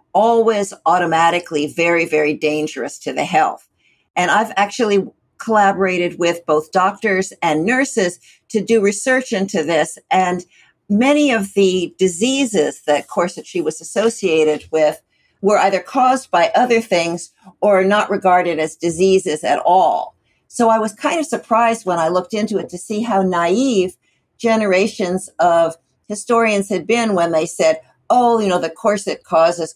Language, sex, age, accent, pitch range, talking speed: English, female, 60-79, American, 170-220 Hz, 150 wpm